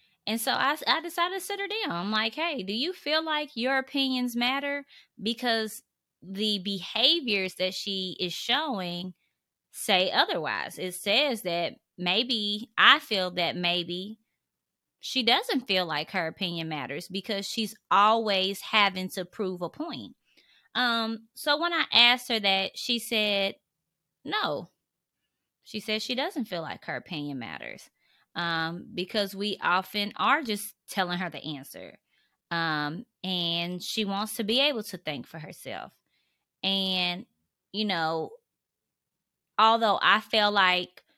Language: English